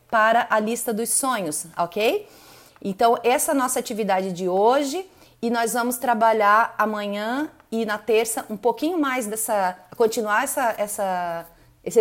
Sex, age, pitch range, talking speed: female, 30-49, 195-255 Hz, 150 wpm